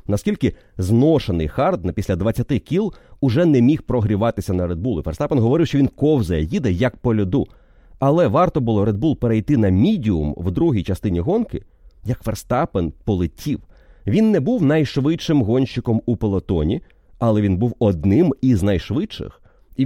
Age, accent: 30-49, native